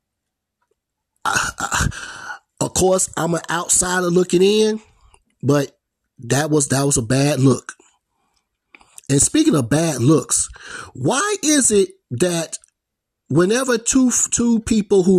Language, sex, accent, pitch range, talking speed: English, male, American, 145-200 Hz, 120 wpm